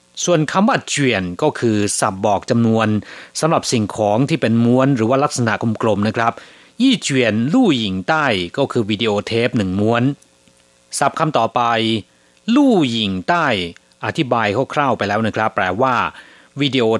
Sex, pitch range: male, 105-140 Hz